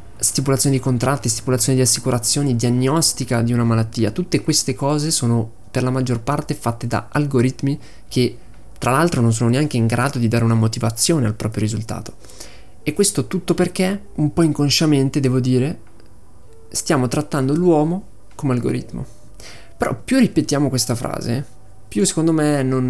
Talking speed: 155 wpm